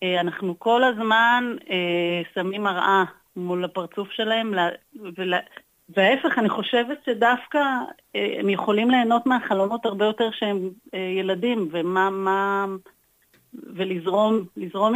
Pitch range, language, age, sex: 185-235 Hz, Hebrew, 30-49, female